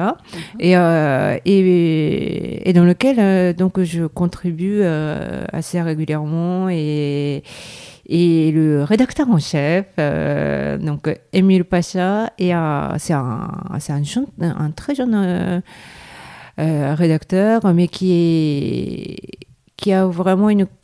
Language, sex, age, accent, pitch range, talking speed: French, female, 40-59, French, 155-195 Hz, 120 wpm